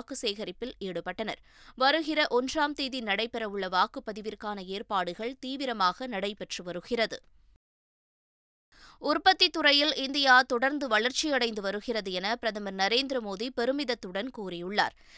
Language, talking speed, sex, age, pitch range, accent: Tamil, 90 wpm, female, 20-39, 205-265 Hz, native